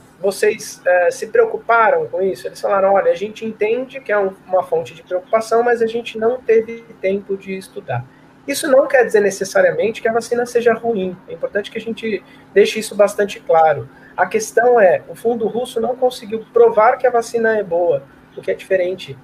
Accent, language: Brazilian, Portuguese